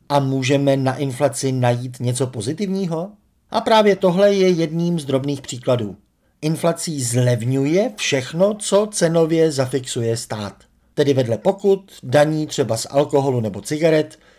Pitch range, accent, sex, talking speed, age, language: 130-180 Hz, native, male, 130 wpm, 50-69, Czech